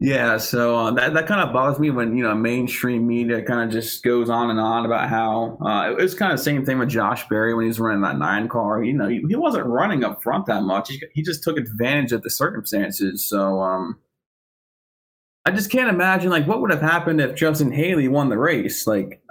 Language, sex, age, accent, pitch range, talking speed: English, male, 20-39, American, 115-155 Hz, 240 wpm